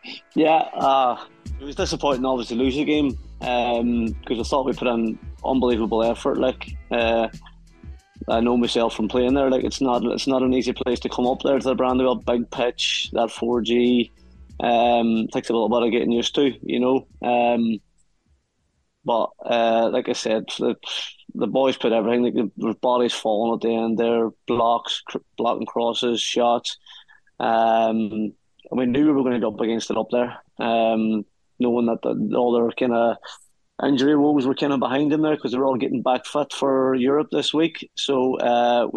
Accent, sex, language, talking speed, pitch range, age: British, male, English, 190 wpm, 115-135 Hz, 20-39